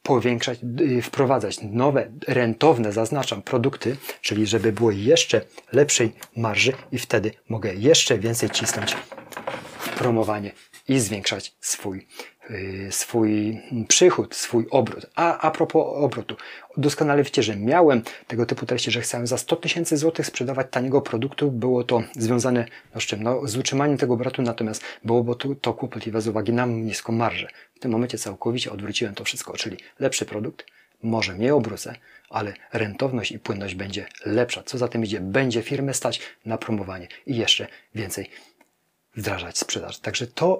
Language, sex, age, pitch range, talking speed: Polish, male, 30-49, 110-130 Hz, 155 wpm